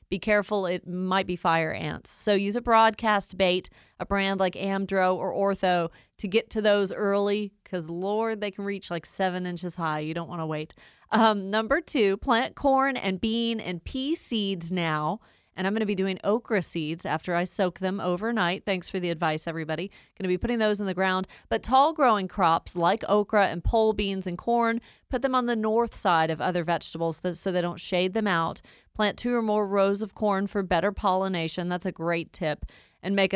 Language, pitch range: English, 175-210 Hz